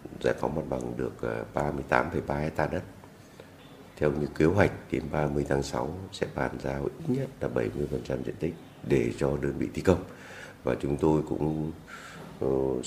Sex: male